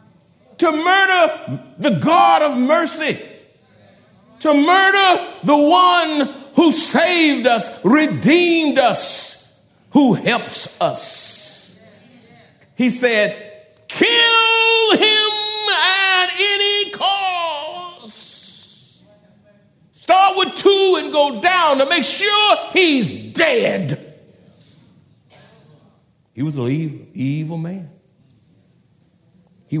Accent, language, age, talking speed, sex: American, English, 50-69, 85 wpm, male